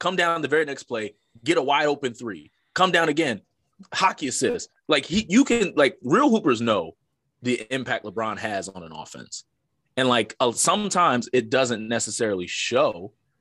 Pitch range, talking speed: 115-165 Hz, 175 wpm